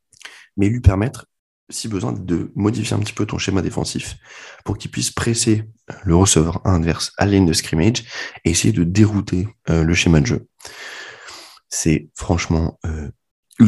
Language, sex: French, male